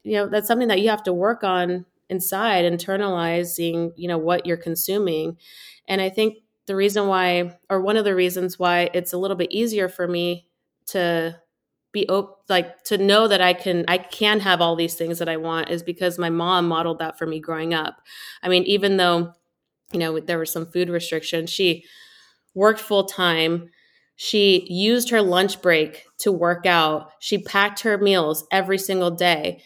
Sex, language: female, English